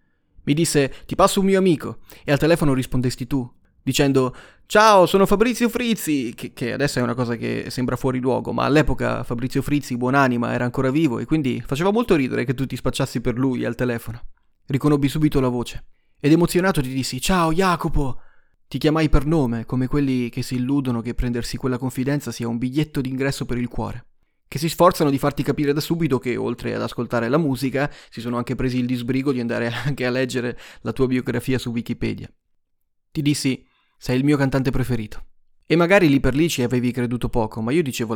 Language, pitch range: Italian, 120-145 Hz